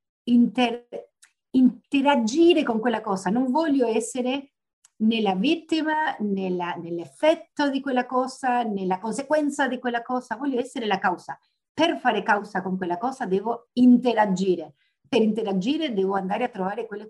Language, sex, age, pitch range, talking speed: Italian, female, 50-69, 190-250 Hz, 135 wpm